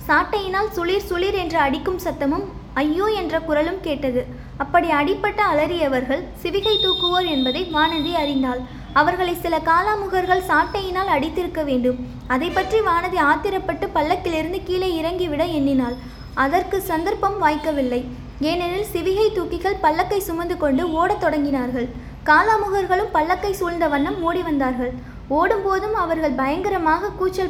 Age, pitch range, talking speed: 20-39, 295-370 Hz, 115 wpm